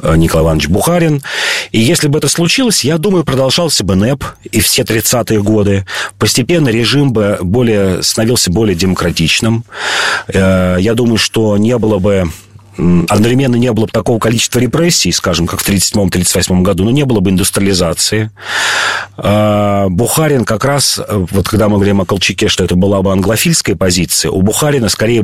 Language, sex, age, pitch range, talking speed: Russian, male, 40-59, 90-115 Hz, 155 wpm